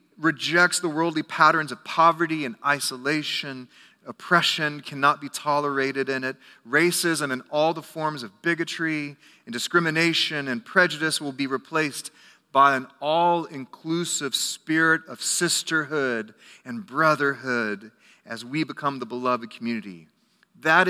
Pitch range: 135-175 Hz